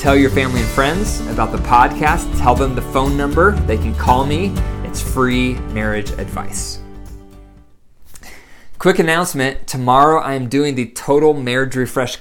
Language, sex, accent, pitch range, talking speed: English, male, American, 110-140 Hz, 150 wpm